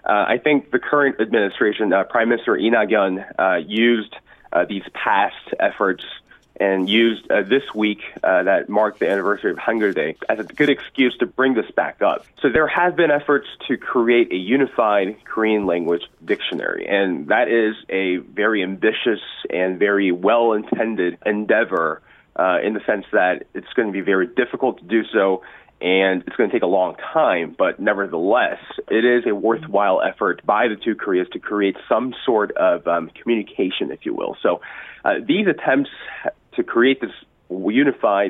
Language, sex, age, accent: Korean, male, 30-49, American